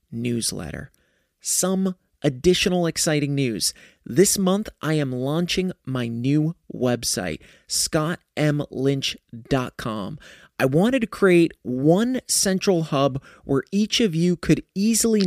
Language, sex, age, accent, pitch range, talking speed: English, male, 30-49, American, 140-180 Hz, 105 wpm